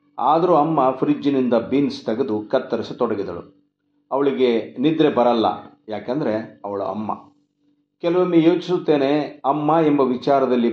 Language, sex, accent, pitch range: Kannada, male, native, 115-145 Hz